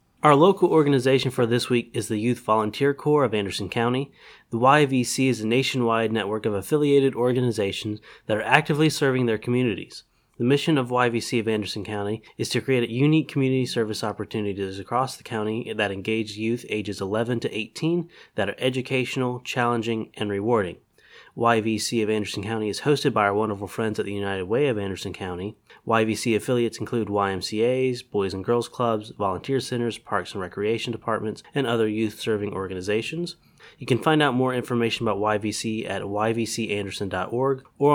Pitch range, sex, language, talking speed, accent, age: 105-130 Hz, male, English, 165 wpm, American, 30-49